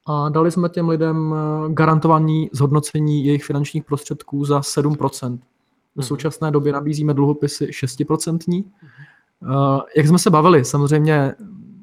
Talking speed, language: 120 wpm, Czech